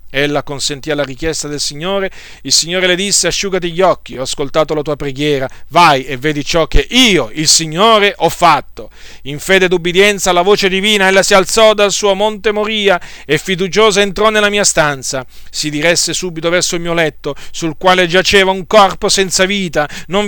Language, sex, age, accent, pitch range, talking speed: Italian, male, 40-59, native, 150-200 Hz, 185 wpm